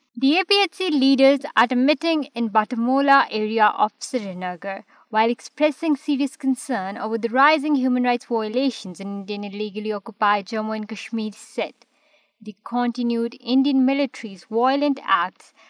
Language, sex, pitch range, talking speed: Urdu, female, 215-270 Hz, 135 wpm